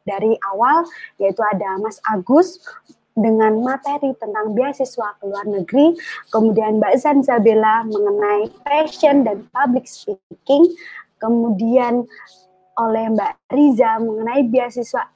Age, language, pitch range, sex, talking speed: 20-39, Indonesian, 215-280 Hz, male, 105 wpm